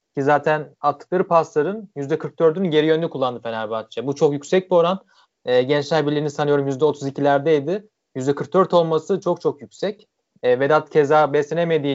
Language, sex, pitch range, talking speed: Turkish, male, 145-170 Hz, 135 wpm